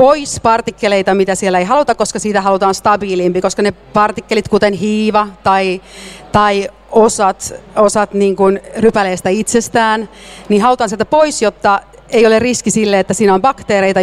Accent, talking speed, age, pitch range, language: native, 150 wpm, 40-59, 190-225 Hz, Finnish